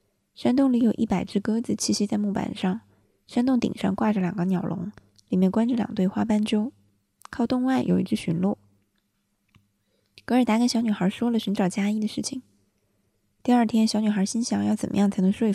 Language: Chinese